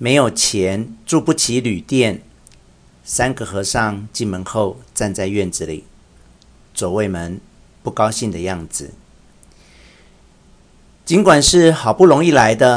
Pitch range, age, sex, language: 90-130 Hz, 50-69, male, Chinese